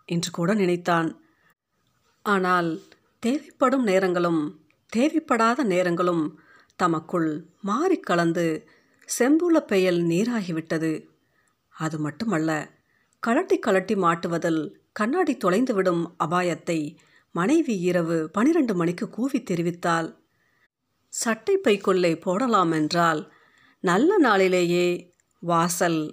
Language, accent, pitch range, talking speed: Tamil, native, 170-215 Hz, 80 wpm